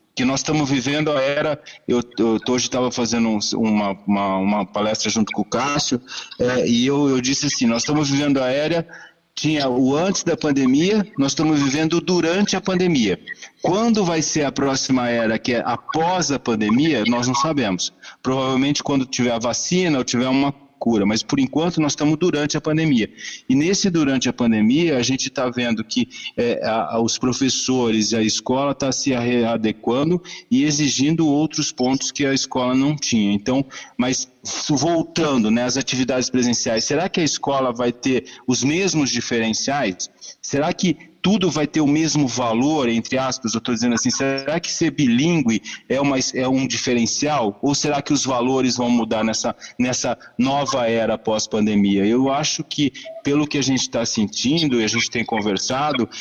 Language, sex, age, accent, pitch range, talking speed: Portuguese, male, 40-59, Brazilian, 120-150 Hz, 170 wpm